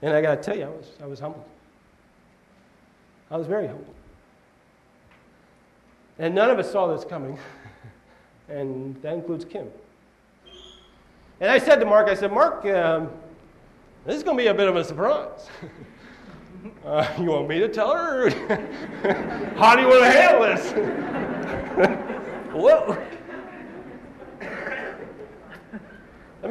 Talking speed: 140 wpm